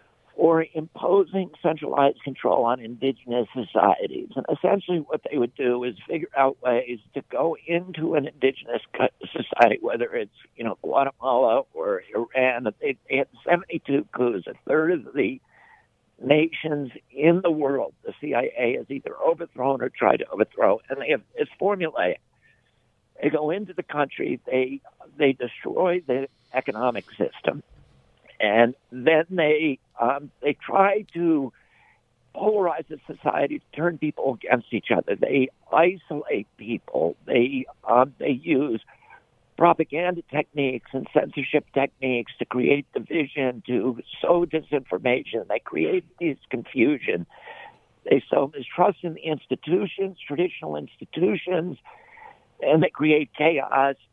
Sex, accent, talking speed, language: male, American, 130 wpm, English